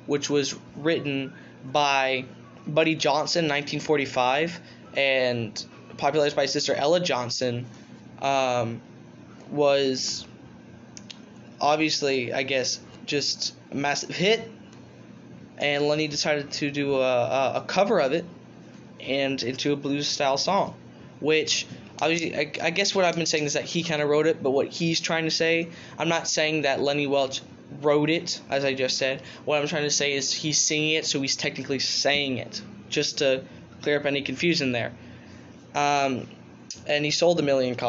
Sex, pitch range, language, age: male, 130-150 Hz, English, 10-29